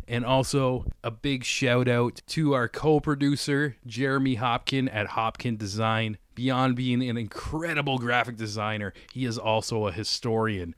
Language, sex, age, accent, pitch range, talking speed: English, male, 20-39, American, 110-135 Hz, 140 wpm